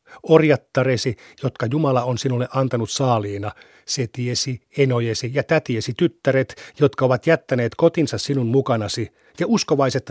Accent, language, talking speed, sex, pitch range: native, Finnish, 120 wpm, male, 120-150 Hz